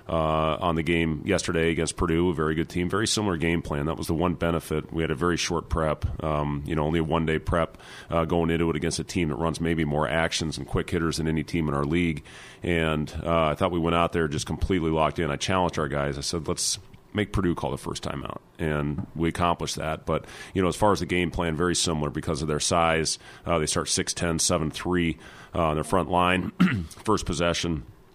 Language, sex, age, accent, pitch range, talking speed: English, male, 30-49, American, 80-85 Hz, 240 wpm